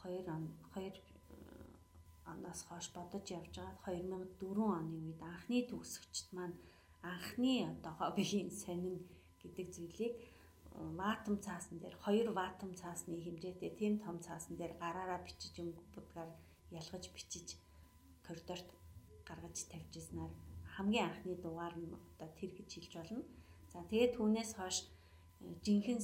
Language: English